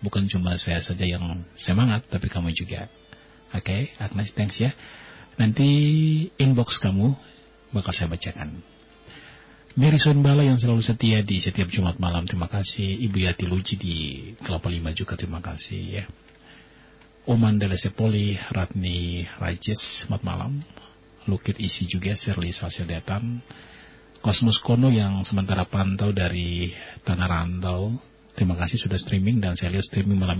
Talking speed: 135 wpm